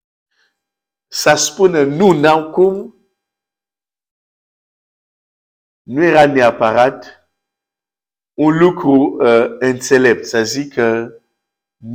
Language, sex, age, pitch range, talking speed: Romanian, male, 50-69, 105-155 Hz, 75 wpm